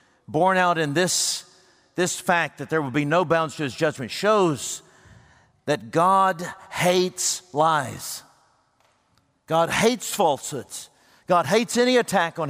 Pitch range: 130-180 Hz